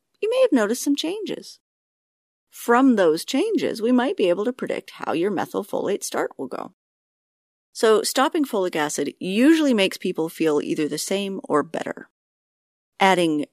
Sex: female